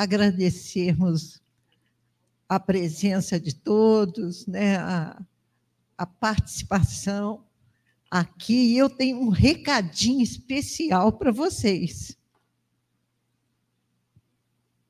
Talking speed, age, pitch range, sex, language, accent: 75 wpm, 60-79, 170-230 Hz, female, Portuguese, Brazilian